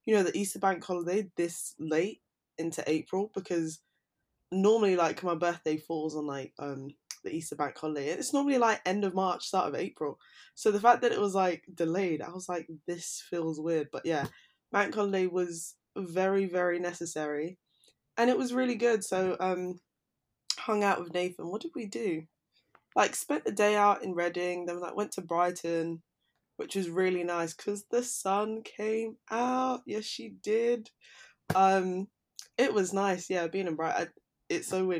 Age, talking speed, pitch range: 20-39, 180 wpm, 165-200 Hz